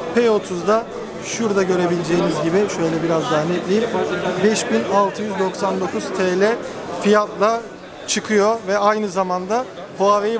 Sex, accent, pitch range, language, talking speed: male, native, 175-210 Hz, Turkish, 90 wpm